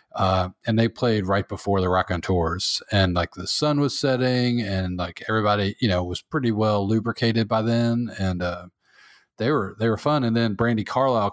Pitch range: 90-115 Hz